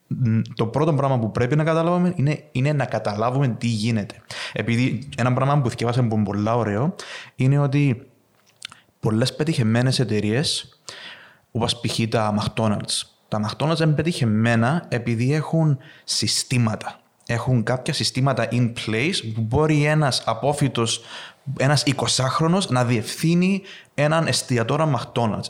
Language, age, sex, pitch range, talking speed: Greek, 30-49, male, 115-160 Hz, 125 wpm